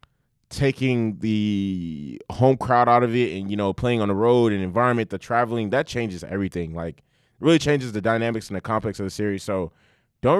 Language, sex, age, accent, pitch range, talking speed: English, male, 20-39, American, 105-130 Hz, 195 wpm